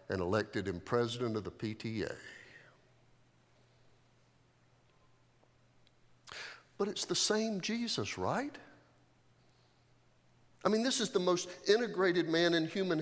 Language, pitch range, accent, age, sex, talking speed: English, 125-195 Hz, American, 50-69, male, 105 wpm